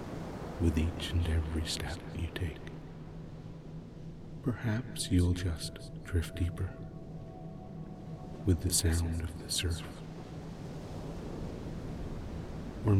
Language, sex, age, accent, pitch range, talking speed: English, male, 50-69, American, 80-95 Hz, 90 wpm